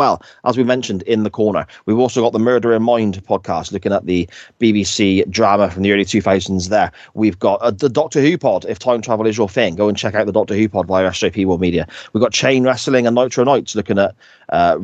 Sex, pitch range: male, 100-130 Hz